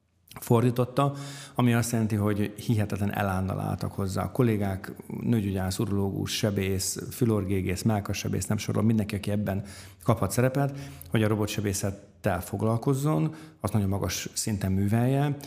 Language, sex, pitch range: Hungarian, male, 95-115 Hz